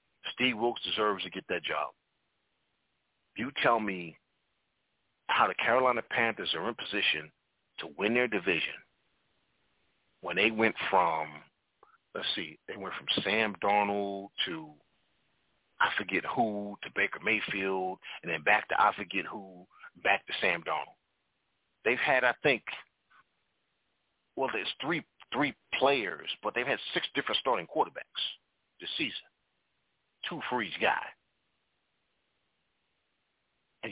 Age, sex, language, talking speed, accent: 40-59, male, English, 130 wpm, American